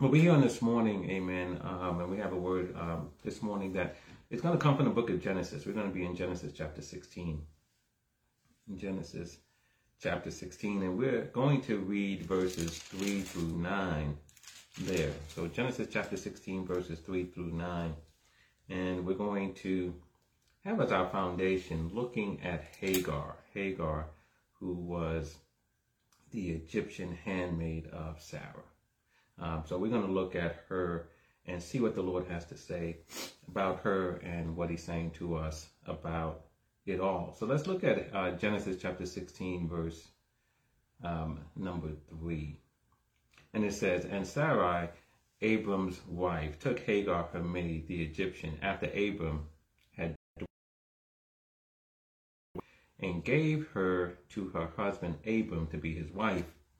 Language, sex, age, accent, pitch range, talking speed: English, male, 30-49, American, 80-95 Hz, 150 wpm